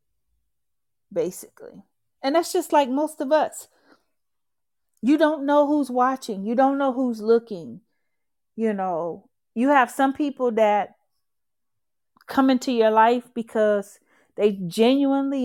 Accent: American